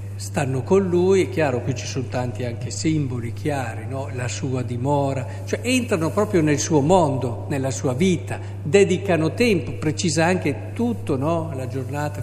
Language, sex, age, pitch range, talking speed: Italian, male, 50-69, 100-150 Hz, 160 wpm